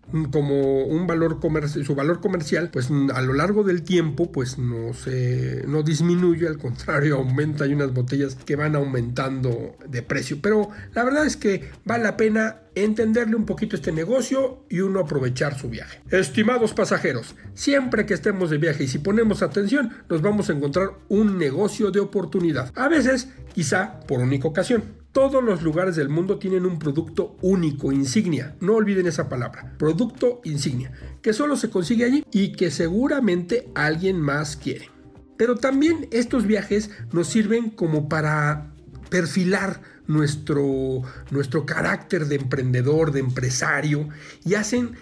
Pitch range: 150-215 Hz